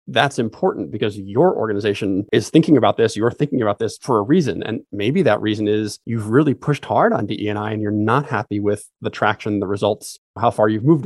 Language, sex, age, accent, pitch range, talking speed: English, male, 30-49, American, 105-125 Hz, 220 wpm